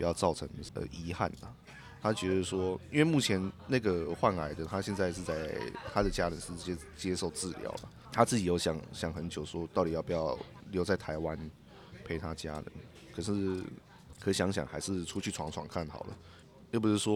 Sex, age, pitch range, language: male, 20-39, 80-95 Hz, Chinese